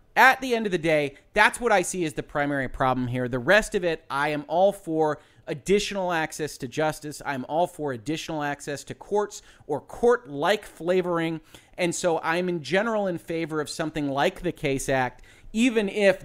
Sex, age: male, 30-49